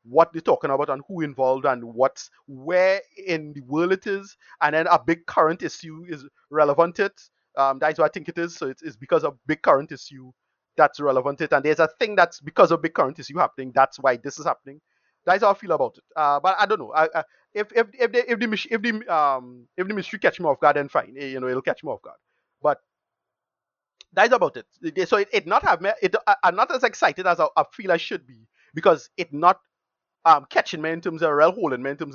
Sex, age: male, 30-49